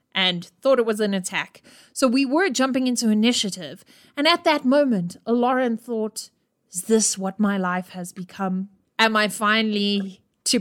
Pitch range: 195-240 Hz